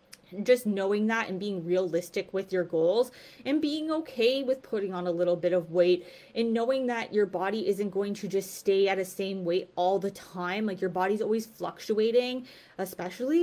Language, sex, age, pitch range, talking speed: English, female, 20-39, 180-220 Hz, 190 wpm